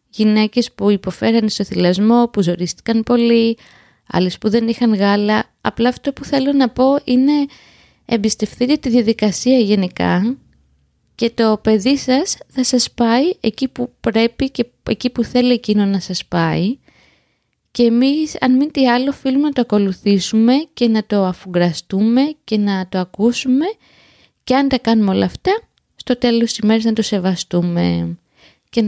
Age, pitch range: 20-39, 210-255 Hz